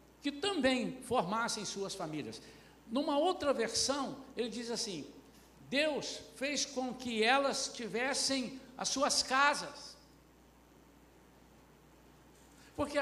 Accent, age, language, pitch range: Brazilian, 60-79, Portuguese, 230-290 Hz